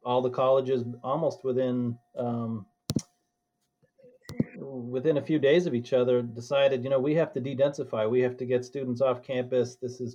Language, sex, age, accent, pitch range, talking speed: English, male, 40-59, American, 115-135 Hz, 170 wpm